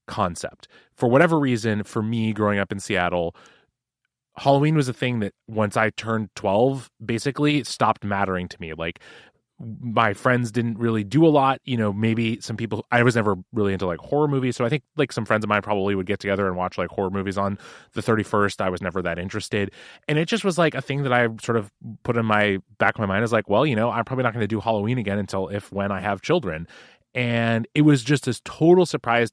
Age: 20-39